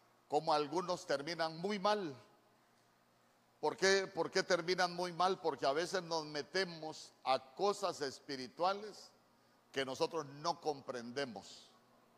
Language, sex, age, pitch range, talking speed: Spanish, male, 50-69, 140-190 Hz, 115 wpm